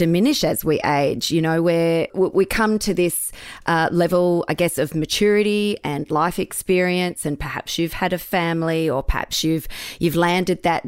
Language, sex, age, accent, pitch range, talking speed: English, female, 30-49, Australian, 155-180 Hz, 175 wpm